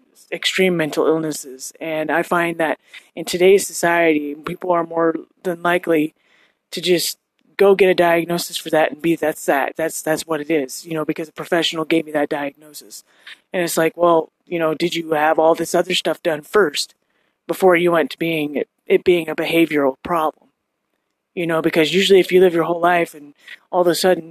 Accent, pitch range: American, 160-180 Hz